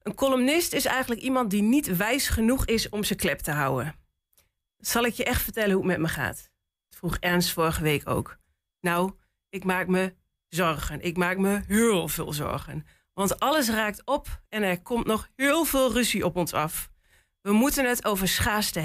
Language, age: Dutch, 40-59